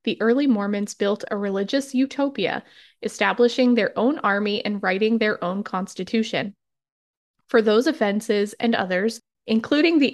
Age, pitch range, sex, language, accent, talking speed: 20-39, 205-250 Hz, female, English, American, 135 wpm